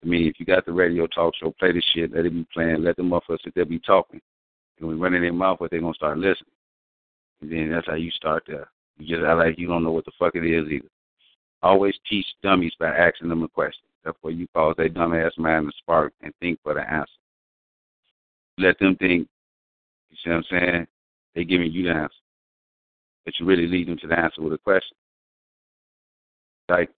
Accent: American